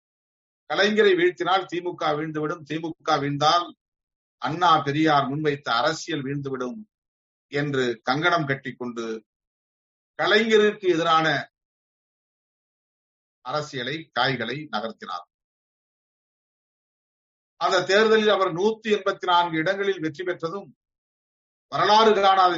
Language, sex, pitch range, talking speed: Tamil, male, 125-180 Hz, 75 wpm